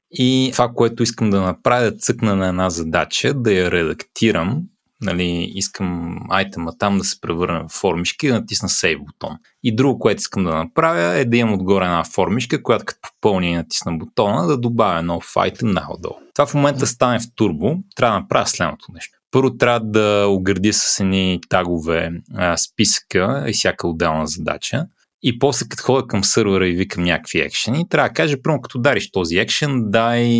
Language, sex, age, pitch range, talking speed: Bulgarian, male, 30-49, 95-125 Hz, 185 wpm